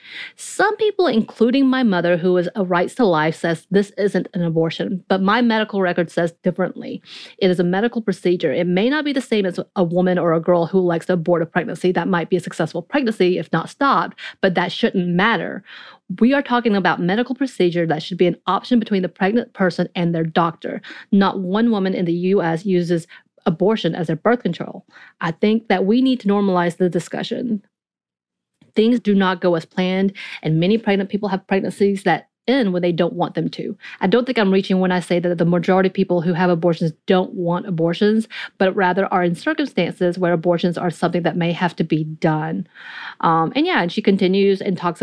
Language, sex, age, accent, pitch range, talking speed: English, female, 30-49, American, 175-205 Hz, 210 wpm